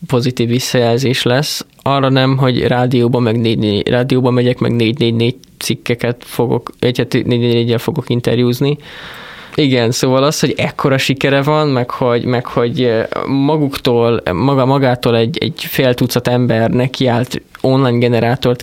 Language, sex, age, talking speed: Hungarian, male, 20-39, 150 wpm